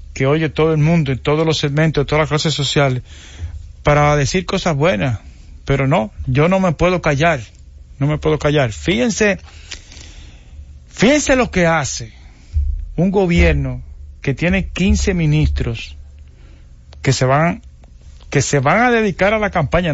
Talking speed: 155 wpm